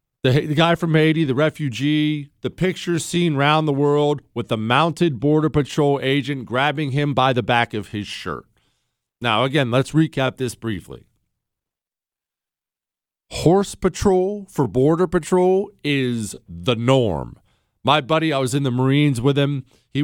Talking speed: 150 wpm